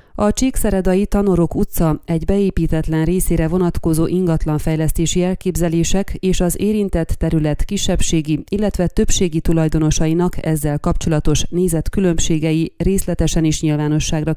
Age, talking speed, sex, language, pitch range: 30-49, 105 wpm, female, Hungarian, 160-190 Hz